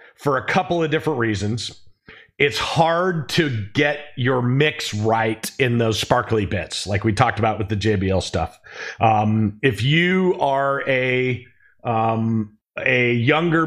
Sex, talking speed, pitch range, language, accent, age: male, 145 wpm, 120-150 Hz, English, American, 40-59